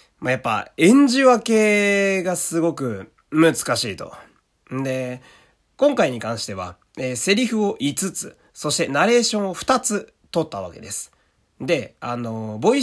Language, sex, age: Japanese, male, 30-49